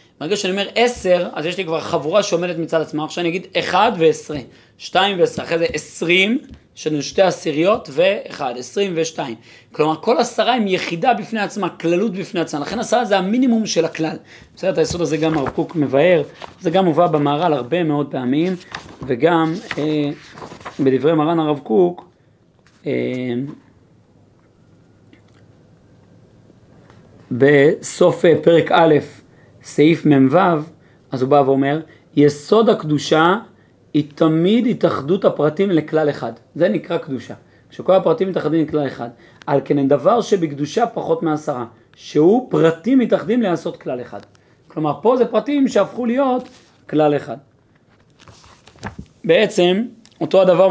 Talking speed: 135 wpm